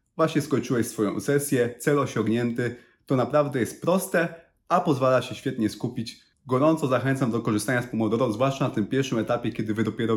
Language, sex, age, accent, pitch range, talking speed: Polish, male, 30-49, native, 120-160 Hz, 165 wpm